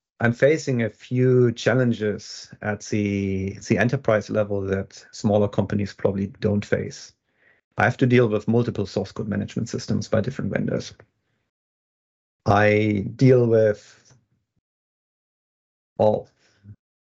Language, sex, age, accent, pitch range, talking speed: English, male, 30-49, German, 105-120 Hz, 115 wpm